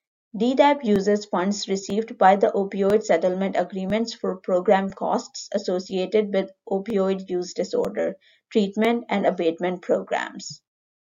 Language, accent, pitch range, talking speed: English, Indian, 190-230 Hz, 115 wpm